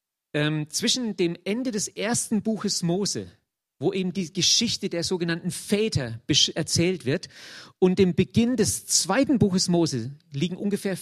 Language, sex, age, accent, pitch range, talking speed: German, male, 40-59, German, 155-205 Hz, 145 wpm